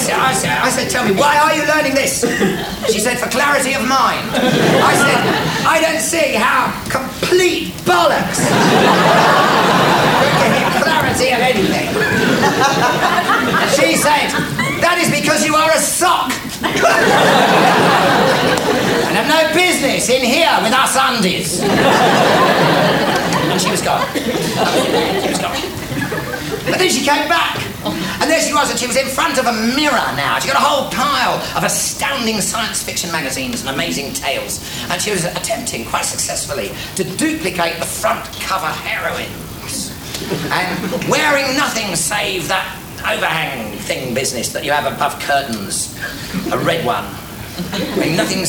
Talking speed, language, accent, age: 140 wpm, English, British, 40-59